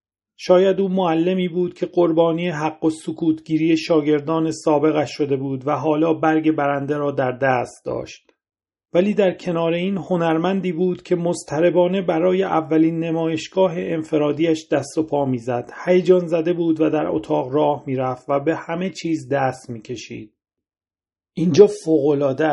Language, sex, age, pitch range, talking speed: Persian, male, 40-59, 145-175 Hz, 145 wpm